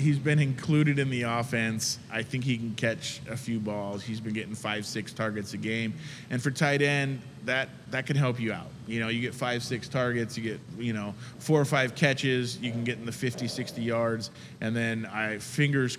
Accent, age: American, 20-39